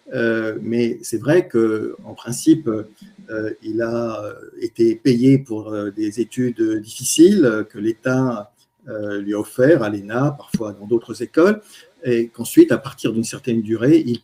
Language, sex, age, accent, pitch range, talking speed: French, male, 50-69, French, 110-145 Hz, 150 wpm